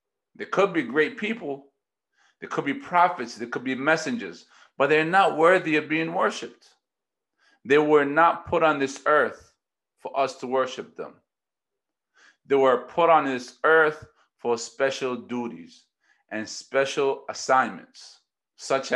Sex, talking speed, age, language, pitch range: male, 140 wpm, 40-59, English, 135-180 Hz